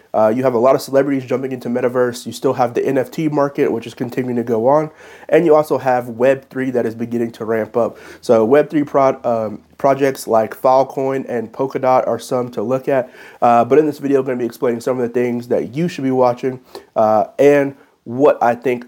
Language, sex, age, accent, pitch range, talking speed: English, male, 30-49, American, 110-130 Hz, 225 wpm